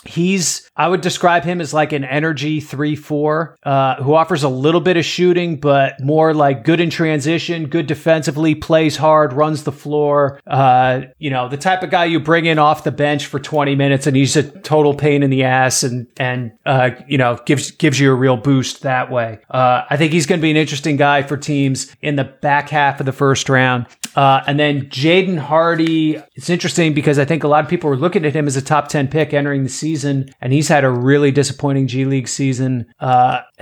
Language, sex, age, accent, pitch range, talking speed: English, male, 30-49, American, 140-160 Hz, 220 wpm